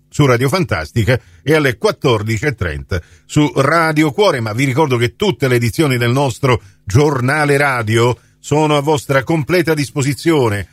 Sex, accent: male, native